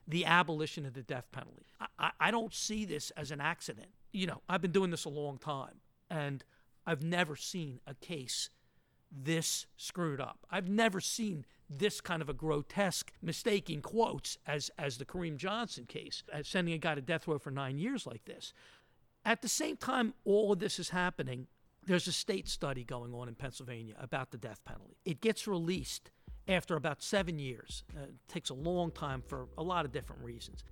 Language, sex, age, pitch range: English, male, 50-69, 140-190 Hz